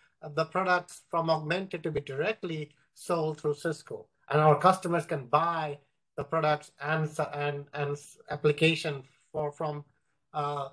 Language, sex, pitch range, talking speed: English, male, 150-180 Hz, 135 wpm